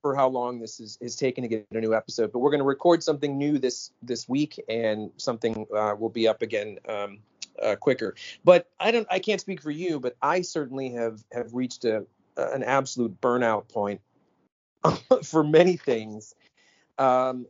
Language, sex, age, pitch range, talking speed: English, male, 40-59, 110-140 Hz, 190 wpm